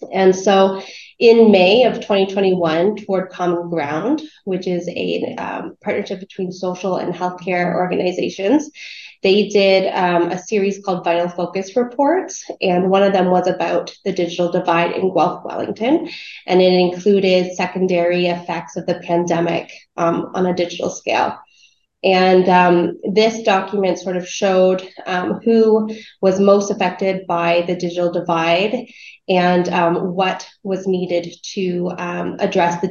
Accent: American